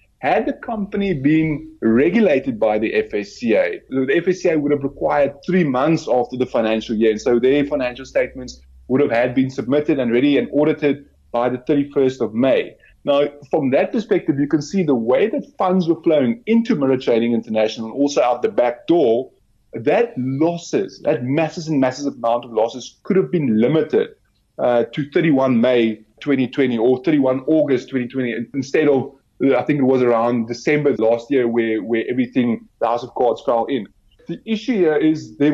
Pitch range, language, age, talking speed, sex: 125-160 Hz, English, 30-49, 180 wpm, male